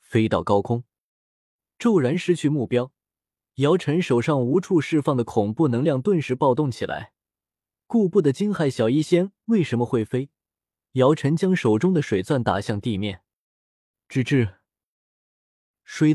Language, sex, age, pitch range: Chinese, male, 20-39, 115-165 Hz